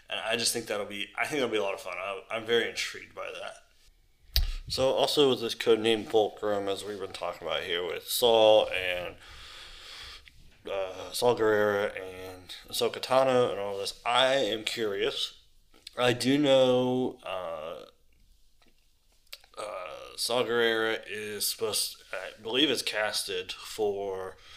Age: 20-39